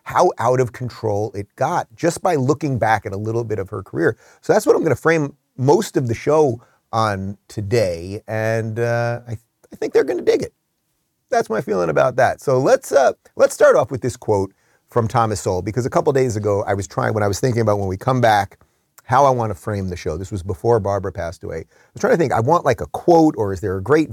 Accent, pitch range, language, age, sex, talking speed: American, 95-130 Hz, English, 30-49, male, 250 wpm